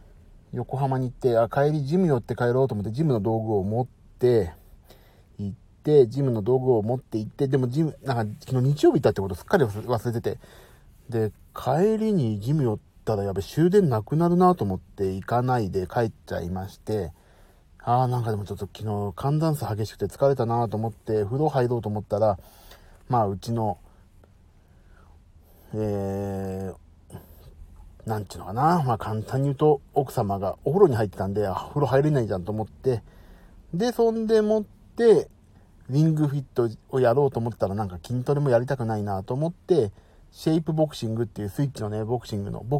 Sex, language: male, Japanese